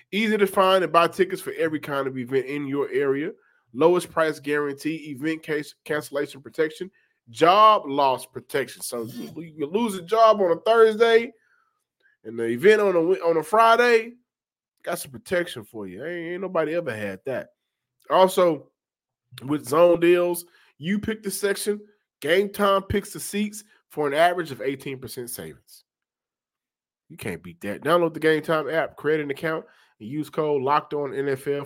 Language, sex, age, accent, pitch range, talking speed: English, male, 20-39, American, 135-195 Hz, 165 wpm